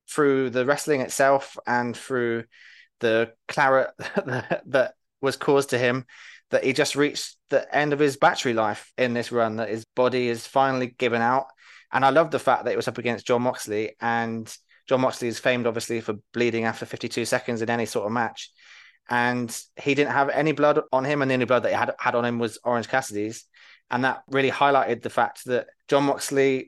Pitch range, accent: 120-135 Hz, British